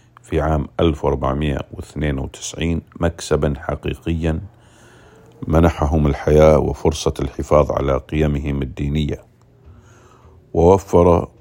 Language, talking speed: English, 70 wpm